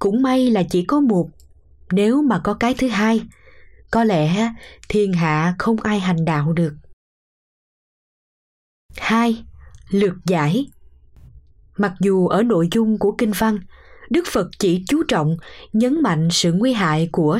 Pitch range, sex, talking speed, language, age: 160-230 Hz, female, 150 wpm, Vietnamese, 20-39